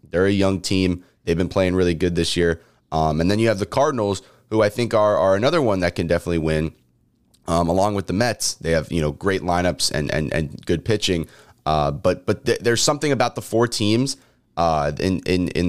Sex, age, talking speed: male, 20-39, 225 wpm